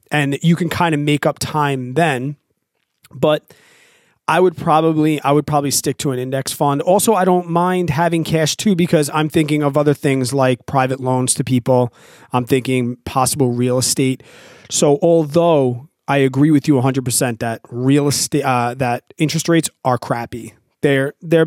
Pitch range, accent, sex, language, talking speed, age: 125-155 Hz, American, male, English, 175 wpm, 30-49